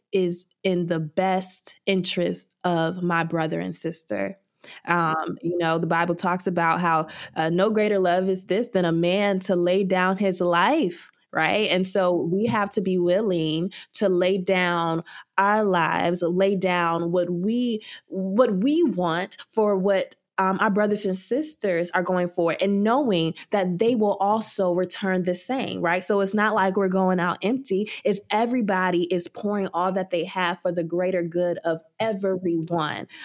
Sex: female